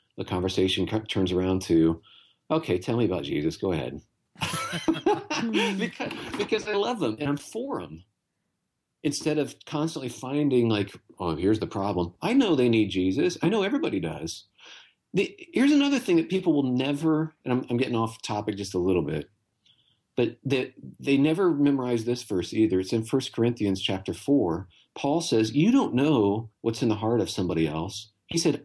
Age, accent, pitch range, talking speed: 40-59, American, 100-150 Hz, 180 wpm